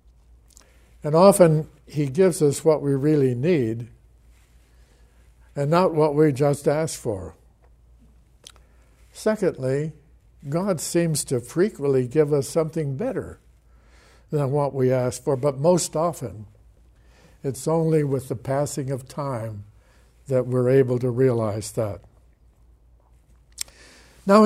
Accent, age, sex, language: American, 60-79, male, English